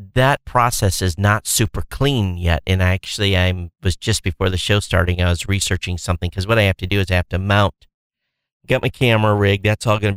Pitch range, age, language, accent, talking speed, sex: 90-115 Hz, 40-59, English, American, 225 wpm, male